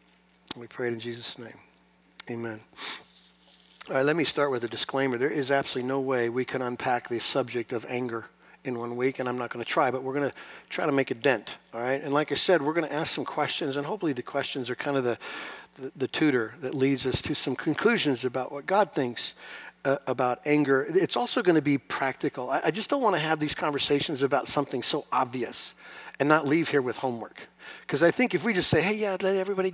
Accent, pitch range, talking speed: American, 120-155 Hz, 225 wpm